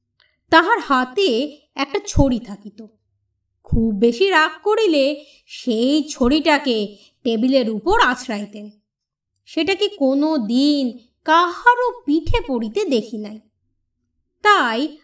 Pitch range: 230-340 Hz